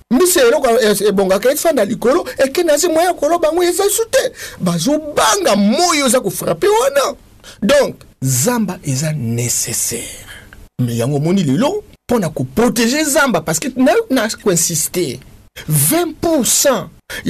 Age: 50-69